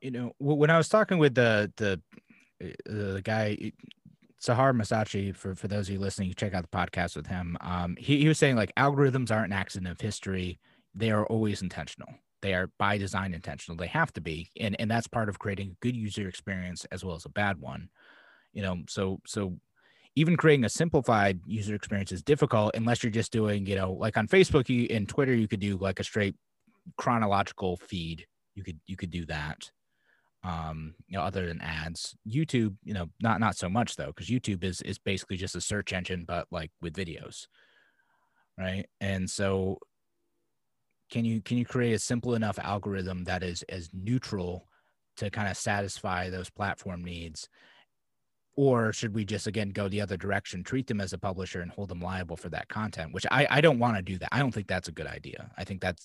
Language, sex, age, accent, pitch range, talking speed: English, male, 30-49, American, 90-115 Hz, 205 wpm